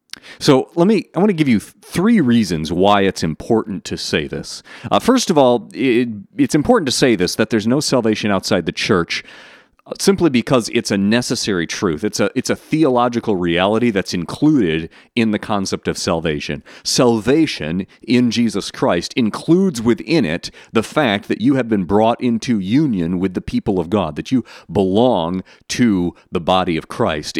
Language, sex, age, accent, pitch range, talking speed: English, male, 40-59, American, 85-120 Hz, 175 wpm